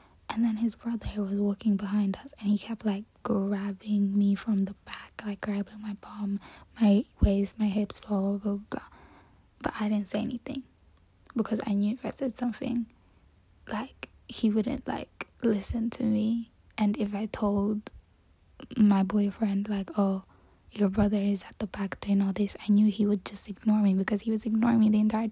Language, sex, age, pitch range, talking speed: English, female, 10-29, 200-225 Hz, 185 wpm